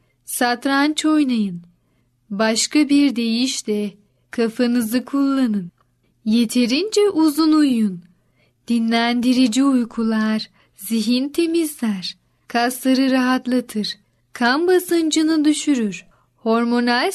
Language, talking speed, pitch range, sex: Turkish, 75 wpm, 220-285 Hz, female